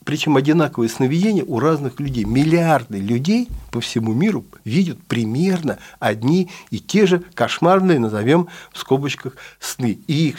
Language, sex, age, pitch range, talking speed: Russian, male, 60-79, 130-185 Hz, 140 wpm